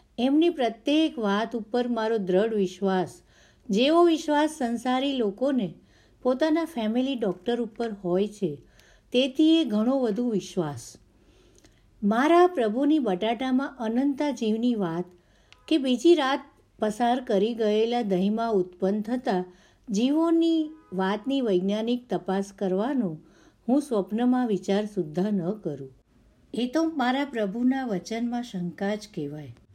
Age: 50-69